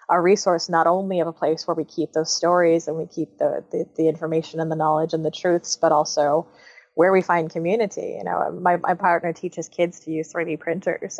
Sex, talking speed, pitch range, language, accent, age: female, 225 wpm, 160-180 Hz, English, American, 20-39